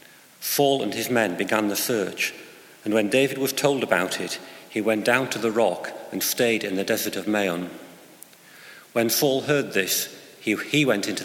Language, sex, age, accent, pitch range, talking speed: English, male, 40-59, British, 95-120 Hz, 180 wpm